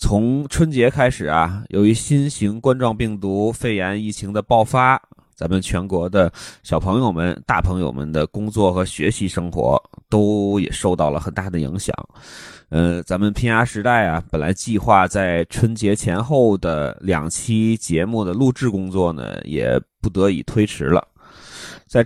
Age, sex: 20-39, male